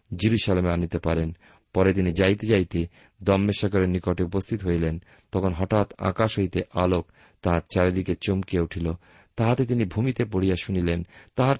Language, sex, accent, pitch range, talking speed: Bengali, male, native, 90-115 Hz, 135 wpm